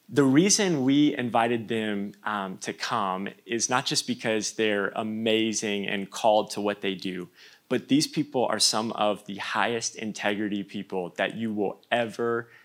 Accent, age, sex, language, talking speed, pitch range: American, 20-39, male, English, 160 wpm, 100-125 Hz